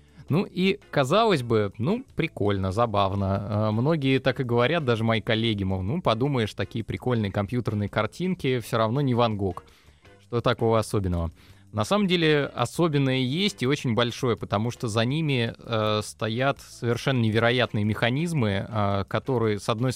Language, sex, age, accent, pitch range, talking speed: Russian, male, 20-39, native, 105-130 Hz, 150 wpm